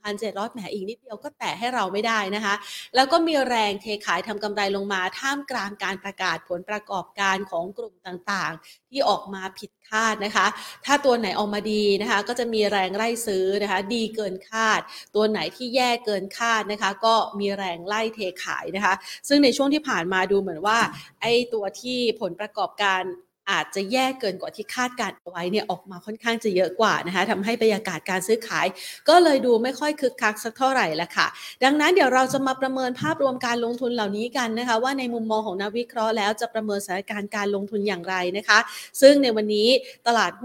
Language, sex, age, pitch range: Thai, female, 30-49, 200-245 Hz